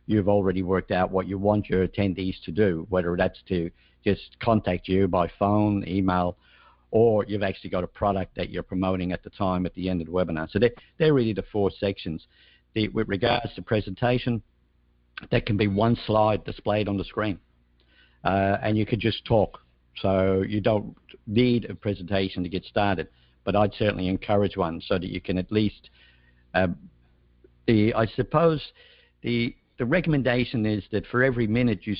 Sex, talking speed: male, 180 wpm